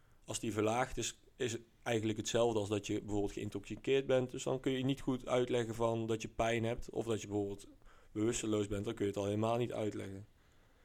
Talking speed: 220 wpm